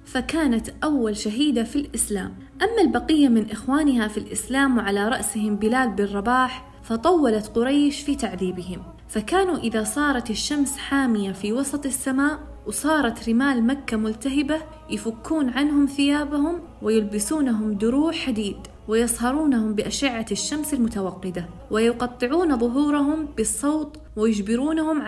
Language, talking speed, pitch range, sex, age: Arabic, 110 wpm, 220-285 Hz, female, 20-39